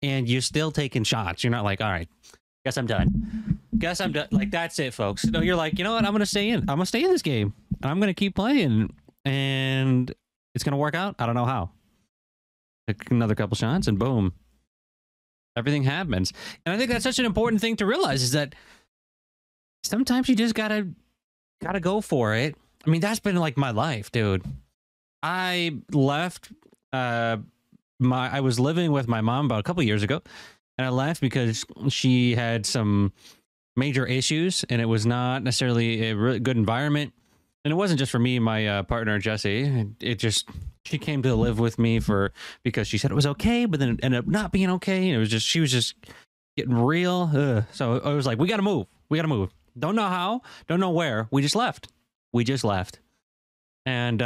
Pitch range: 115-170 Hz